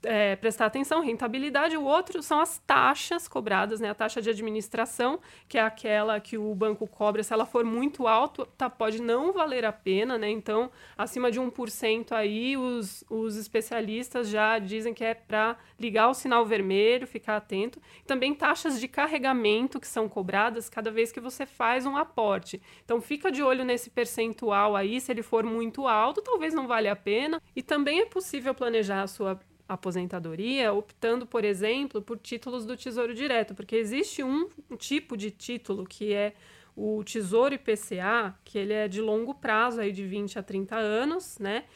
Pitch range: 215-255 Hz